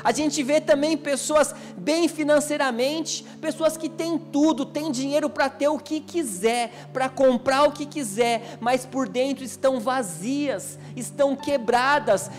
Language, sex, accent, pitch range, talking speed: Portuguese, male, Brazilian, 255-295 Hz, 145 wpm